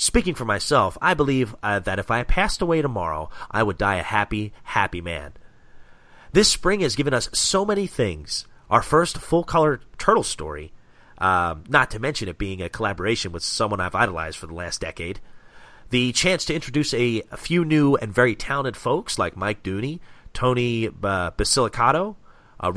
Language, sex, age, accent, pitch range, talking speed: English, male, 30-49, American, 100-145 Hz, 175 wpm